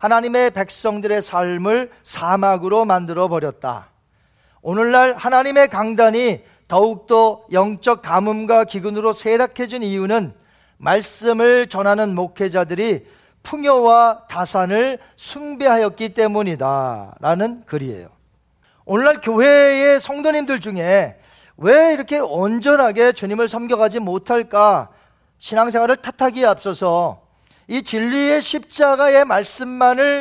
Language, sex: Korean, male